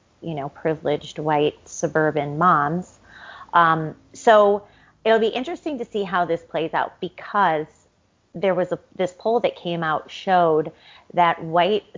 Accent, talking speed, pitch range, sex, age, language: American, 145 wpm, 155-180 Hz, female, 30-49, English